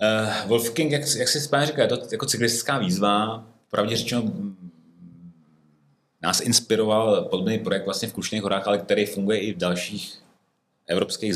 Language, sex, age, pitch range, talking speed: Czech, male, 30-49, 90-110 Hz, 145 wpm